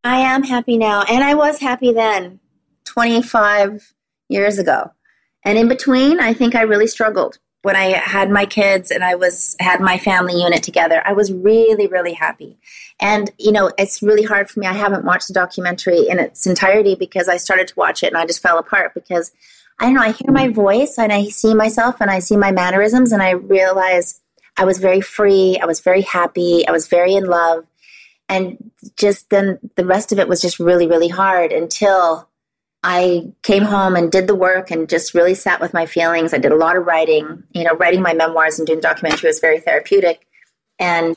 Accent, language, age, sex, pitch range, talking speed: American, English, 30-49, female, 175-220 Hz, 210 wpm